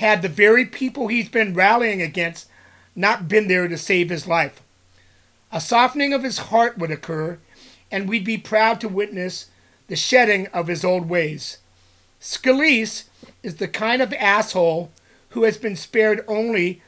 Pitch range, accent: 175-225 Hz, American